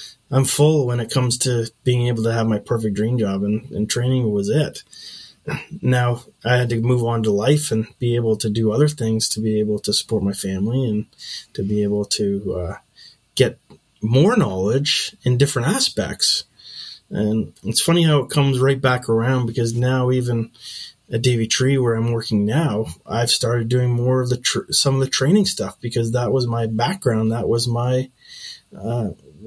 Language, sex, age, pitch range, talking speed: English, male, 20-39, 110-130 Hz, 190 wpm